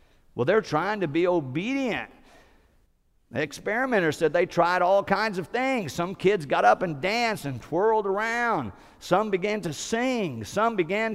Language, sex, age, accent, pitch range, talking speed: English, male, 50-69, American, 110-185 Hz, 160 wpm